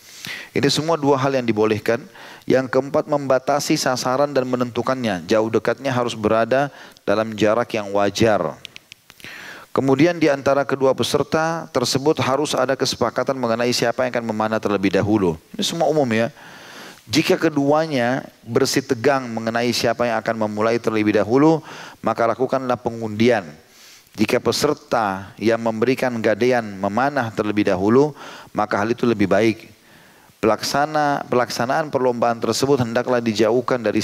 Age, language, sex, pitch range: 30-49, Indonesian, male, 110-130 Hz